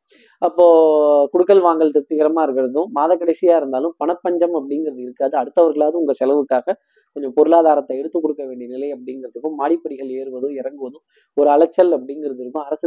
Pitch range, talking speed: 130-165 Hz, 130 wpm